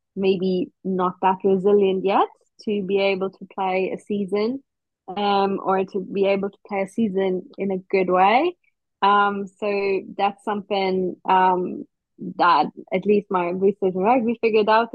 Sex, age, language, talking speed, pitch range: female, 20-39, English, 160 wpm, 195-220 Hz